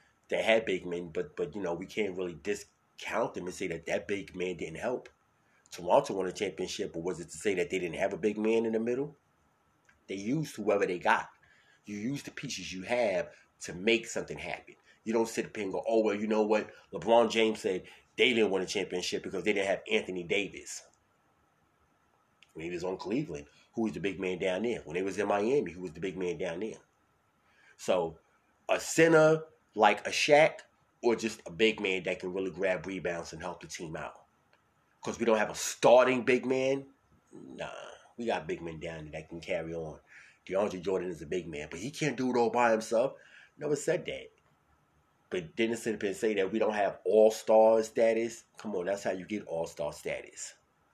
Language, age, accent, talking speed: English, 30-49, American, 210 wpm